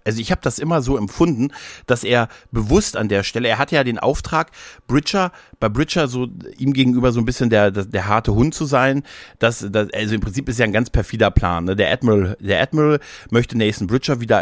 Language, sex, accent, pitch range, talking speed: German, male, German, 100-130 Hz, 210 wpm